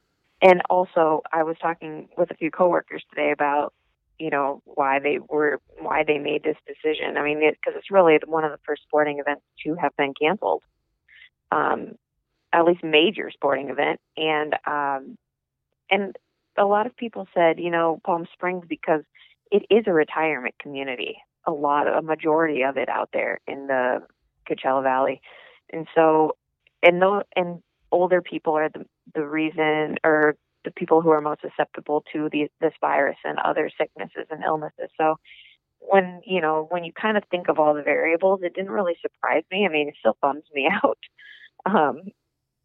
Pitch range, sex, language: 145-175 Hz, female, English